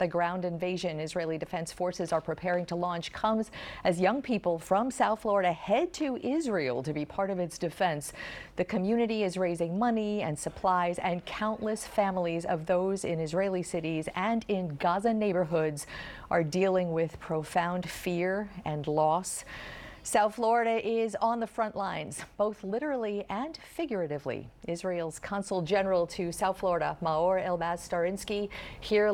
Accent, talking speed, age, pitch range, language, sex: American, 150 wpm, 50-69, 175-205 Hz, English, female